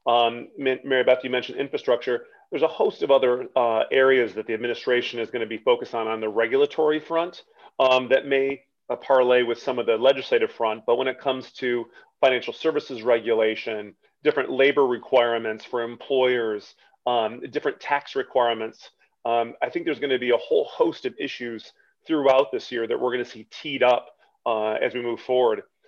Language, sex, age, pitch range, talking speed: English, male, 30-49, 115-135 Hz, 190 wpm